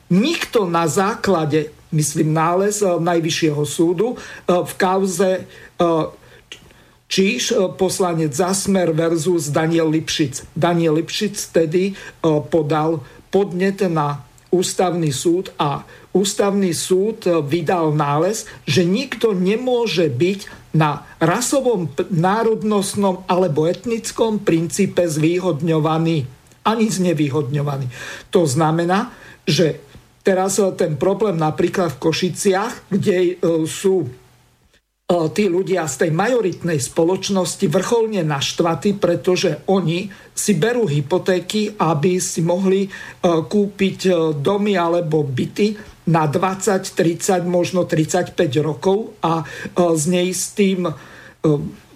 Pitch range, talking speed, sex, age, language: 160-195 Hz, 95 wpm, male, 50-69, Slovak